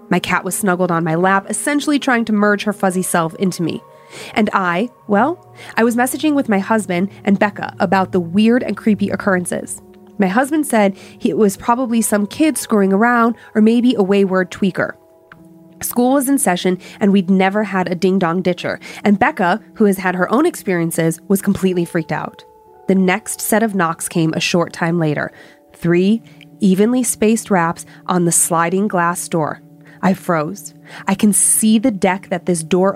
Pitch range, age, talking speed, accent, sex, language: 175-220 Hz, 30-49, 185 wpm, American, female, English